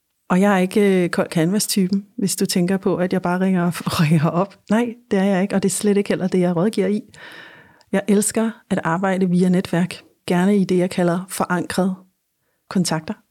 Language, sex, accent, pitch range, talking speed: Danish, female, native, 175-205 Hz, 205 wpm